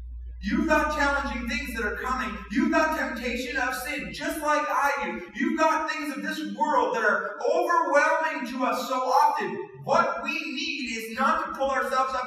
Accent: American